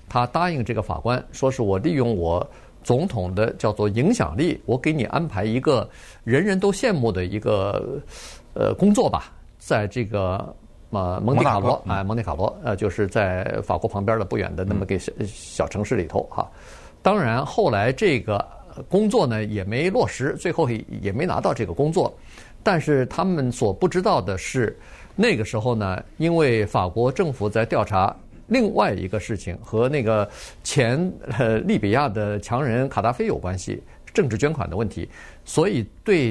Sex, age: male, 50-69